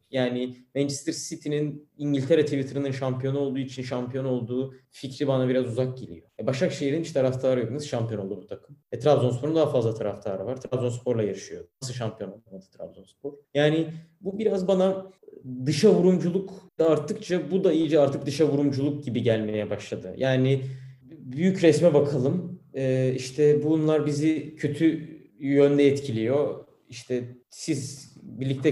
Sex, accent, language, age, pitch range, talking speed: male, native, Turkish, 30-49, 125-165 Hz, 140 wpm